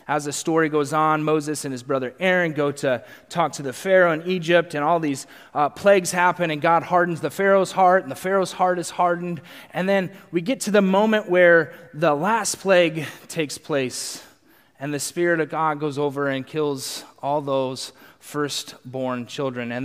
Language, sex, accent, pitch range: English, male, American, 140-170 Hz